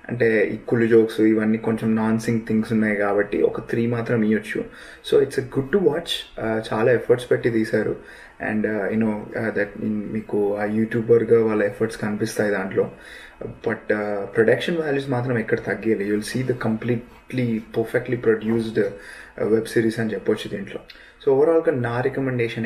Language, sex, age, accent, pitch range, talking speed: Telugu, male, 20-39, native, 110-125 Hz, 150 wpm